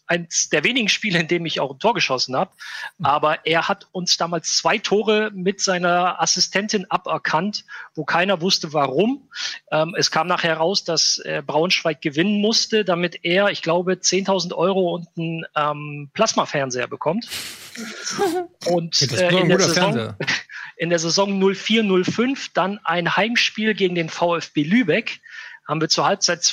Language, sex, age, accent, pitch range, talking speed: German, male, 40-59, German, 160-195 Hz, 150 wpm